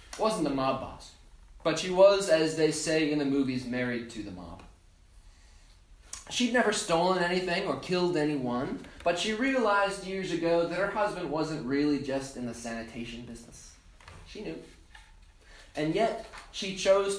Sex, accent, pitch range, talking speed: male, American, 115-175 Hz, 155 wpm